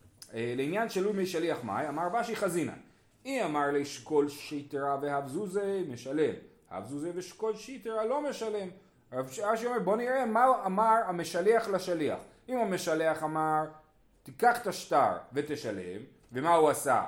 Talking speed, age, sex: 130 wpm, 30-49, male